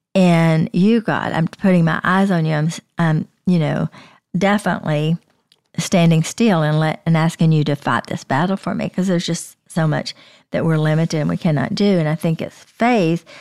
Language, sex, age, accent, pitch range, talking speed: English, female, 50-69, American, 160-185 Hz, 195 wpm